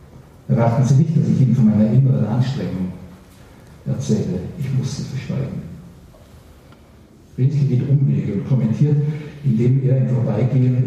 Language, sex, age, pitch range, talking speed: German, male, 50-69, 120-140 Hz, 125 wpm